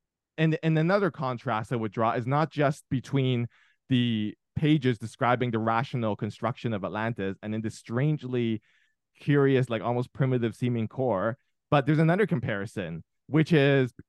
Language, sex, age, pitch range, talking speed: English, male, 20-39, 115-150 Hz, 150 wpm